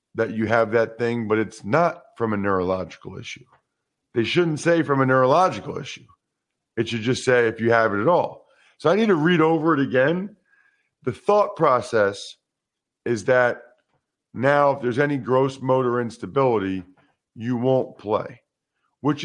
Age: 40-59